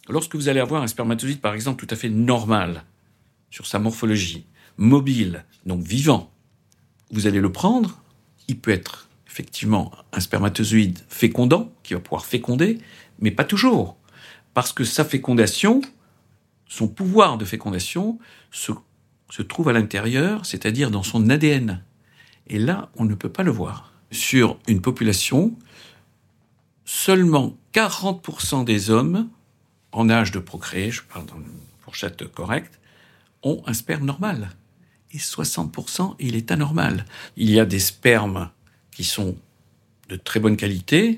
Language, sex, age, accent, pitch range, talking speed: French, male, 60-79, French, 110-155 Hz, 140 wpm